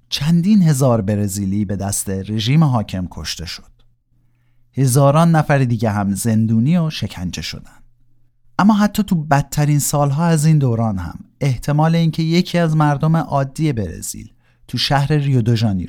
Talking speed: 135 wpm